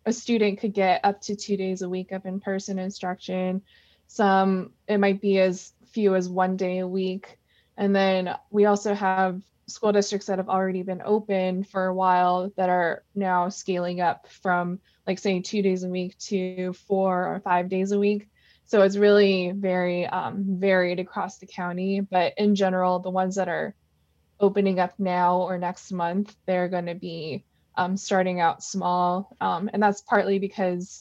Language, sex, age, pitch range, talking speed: English, female, 20-39, 180-200 Hz, 180 wpm